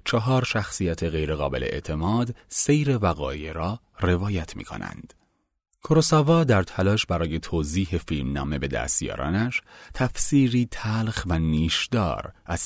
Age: 30-49